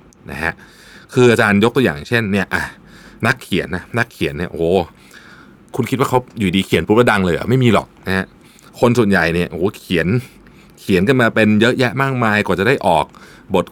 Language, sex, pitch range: Thai, male, 95-125 Hz